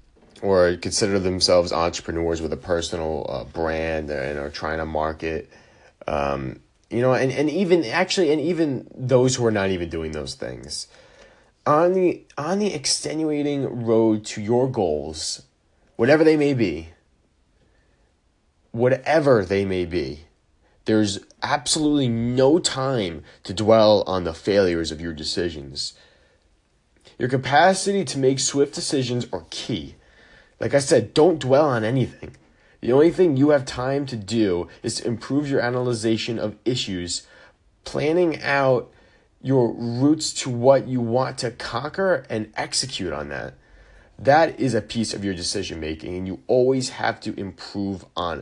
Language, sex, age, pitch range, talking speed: English, male, 20-39, 90-130 Hz, 145 wpm